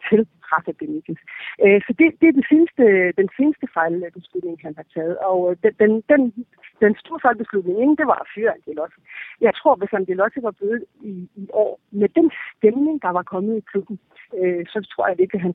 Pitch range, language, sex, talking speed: 185-245 Hz, Danish, female, 190 wpm